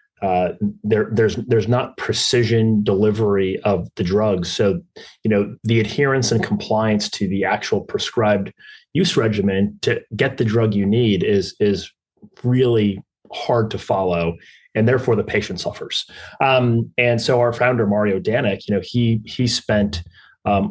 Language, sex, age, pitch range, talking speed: English, male, 30-49, 100-120 Hz, 155 wpm